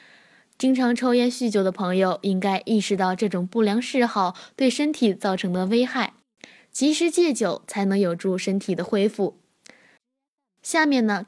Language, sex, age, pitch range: Chinese, female, 10-29, 200-255 Hz